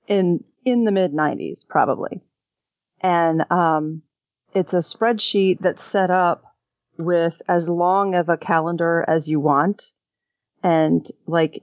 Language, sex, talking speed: English, female, 130 wpm